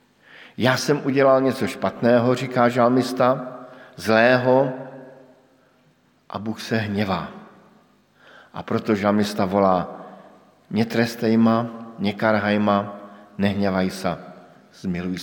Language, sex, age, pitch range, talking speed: Slovak, male, 50-69, 100-130 Hz, 90 wpm